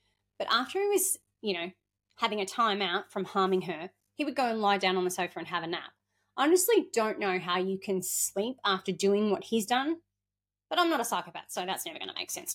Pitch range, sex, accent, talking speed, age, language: 180-235 Hz, female, Australian, 245 wpm, 20-39, English